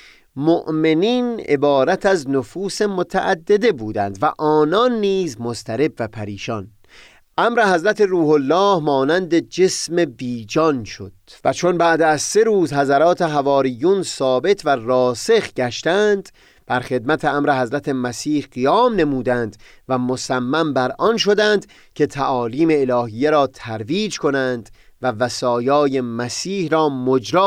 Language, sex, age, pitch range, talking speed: Persian, male, 30-49, 120-175 Hz, 120 wpm